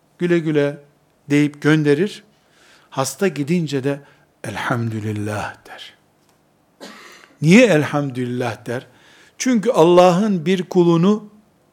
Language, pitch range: Turkish, 140-185 Hz